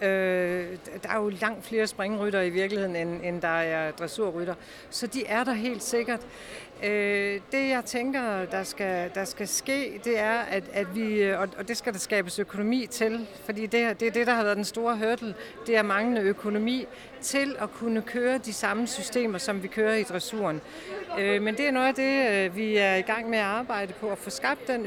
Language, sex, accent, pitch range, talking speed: Danish, female, native, 195-235 Hz, 200 wpm